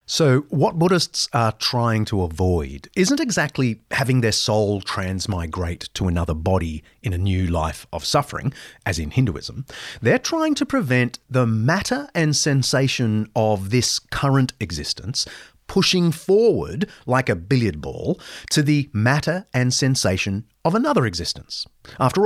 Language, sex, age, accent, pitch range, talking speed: English, male, 40-59, Australian, 100-150 Hz, 140 wpm